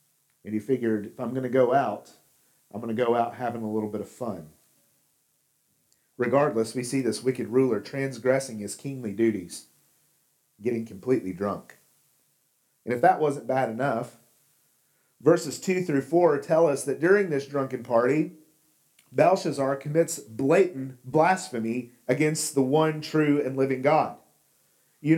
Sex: male